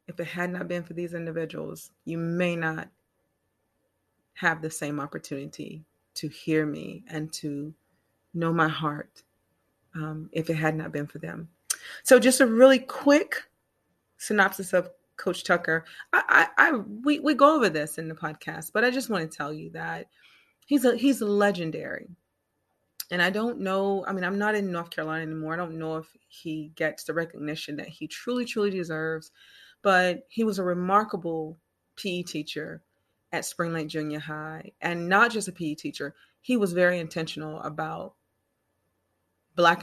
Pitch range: 150-180 Hz